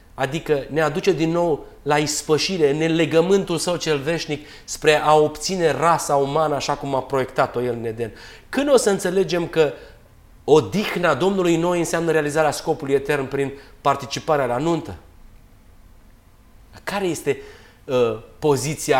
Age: 30-49